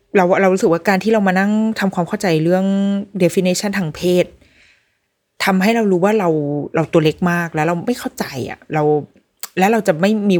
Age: 20-39